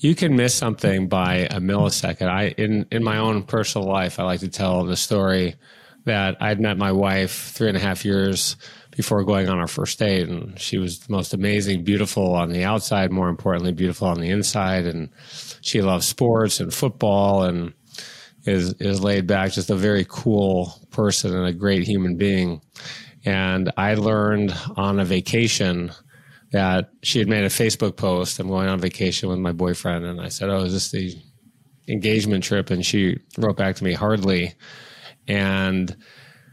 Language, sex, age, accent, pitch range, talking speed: English, male, 20-39, American, 90-105 Hz, 180 wpm